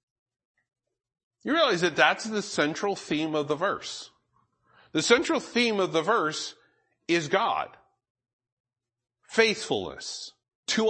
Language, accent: English, American